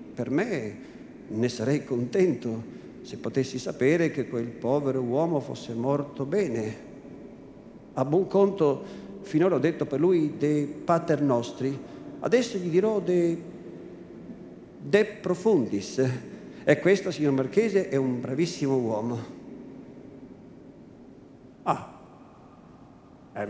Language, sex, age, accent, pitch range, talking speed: Italian, male, 50-69, native, 130-180 Hz, 105 wpm